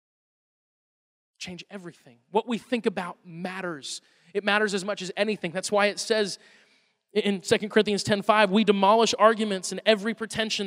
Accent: American